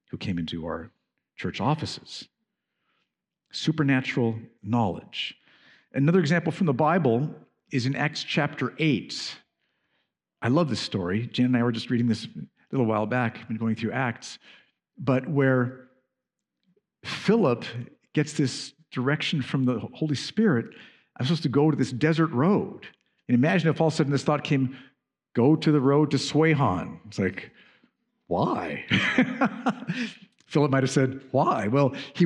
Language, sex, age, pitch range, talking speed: English, male, 50-69, 135-225 Hz, 150 wpm